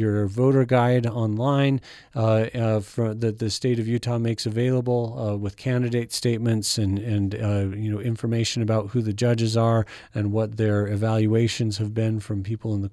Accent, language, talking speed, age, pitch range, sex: American, English, 175 wpm, 40-59, 110-125 Hz, male